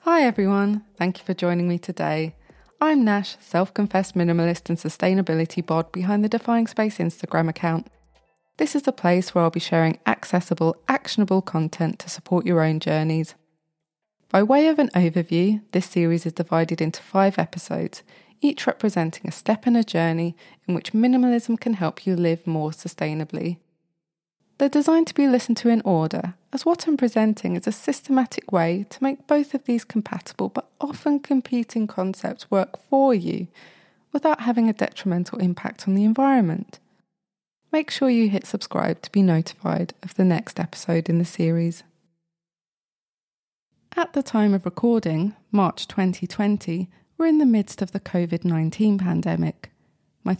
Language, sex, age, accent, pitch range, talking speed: English, female, 20-39, British, 170-230 Hz, 160 wpm